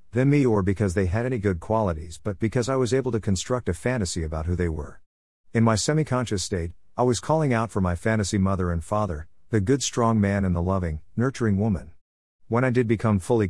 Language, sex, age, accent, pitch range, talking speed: English, male, 50-69, American, 90-120 Hz, 220 wpm